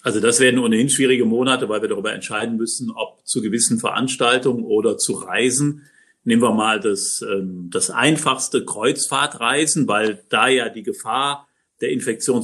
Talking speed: 155 wpm